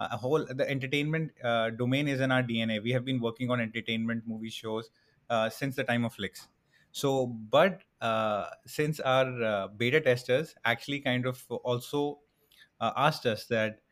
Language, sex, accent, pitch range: English, male, Indian, 115-140 Hz